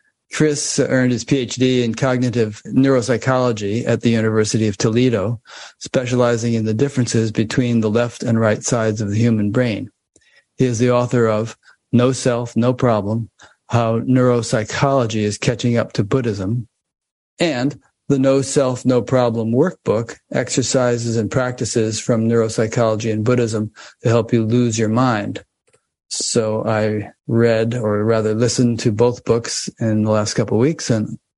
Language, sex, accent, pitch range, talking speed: English, male, American, 110-125 Hz, 150 wpm